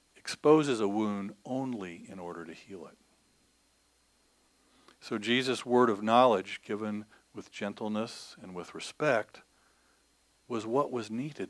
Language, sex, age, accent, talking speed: English, male, 50-69, American, 125 wpm